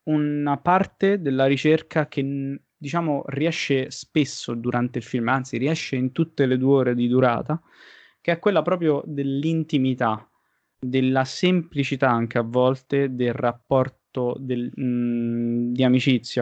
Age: 20-39